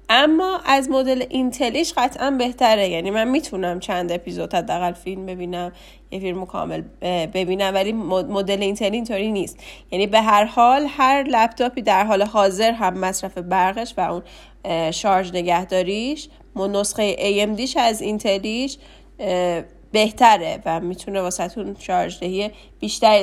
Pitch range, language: 185-235 Hz, Persian